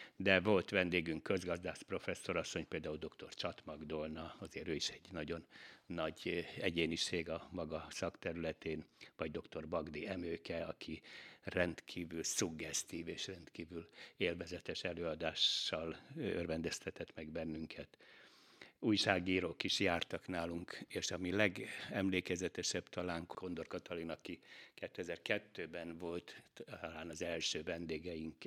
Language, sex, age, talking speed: Hungarian, male, 60-79, 105 wpm